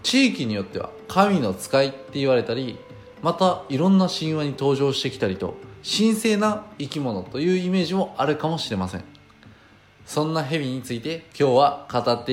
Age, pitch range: 20-39, 120-200 Hz